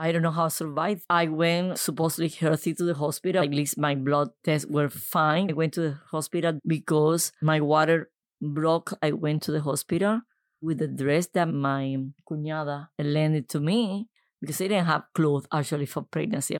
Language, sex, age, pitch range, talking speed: English, female, 20-39, 155-185 Hz, 185 wpm